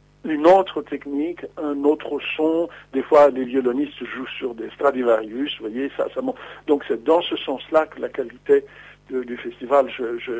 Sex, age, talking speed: male, 60-79, 185 wpm